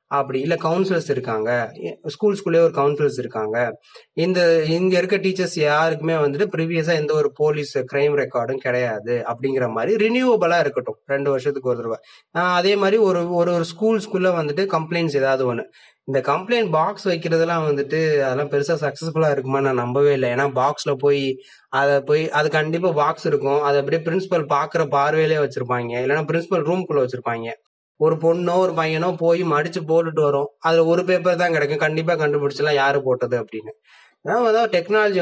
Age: 20-39